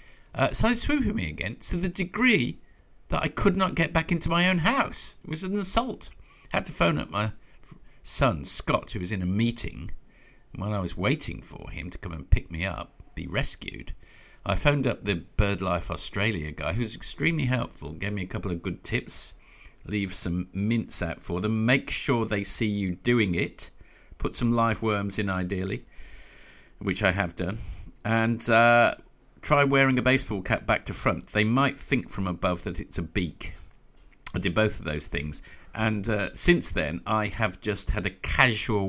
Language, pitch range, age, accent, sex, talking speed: English, 85-115 Hz, 50-69, British, male, 195 wpm